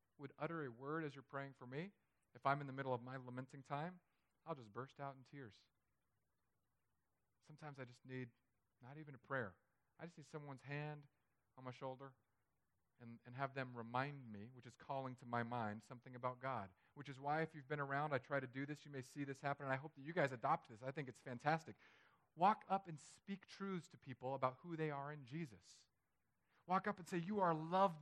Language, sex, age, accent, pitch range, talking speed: English, male, 40-59, American, 125-175 Hz, 225 wpm